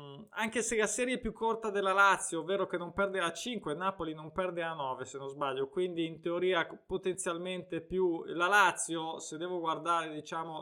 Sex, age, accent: male, 20-39, native